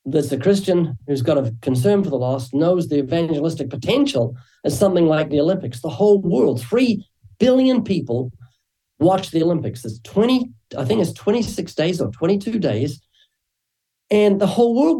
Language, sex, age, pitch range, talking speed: English, male, 50-69, 130-190 Hz, 170 wpm